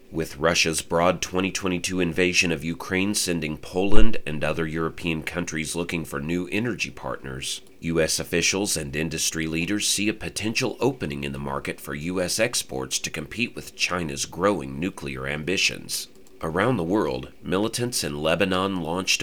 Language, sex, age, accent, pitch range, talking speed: English, male, 30-49, American, 75-95 Hz, 145 wpm